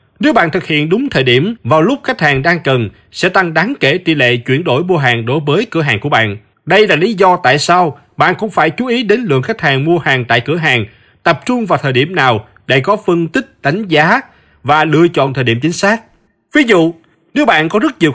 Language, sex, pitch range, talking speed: Vietnamese, male, 130-195 Hz, 250 wpm